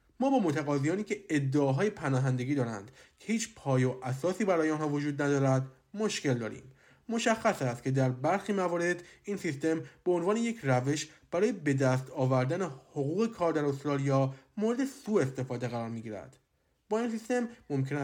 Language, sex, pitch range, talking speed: Persian, male, 135-180 Hz, 160 wpm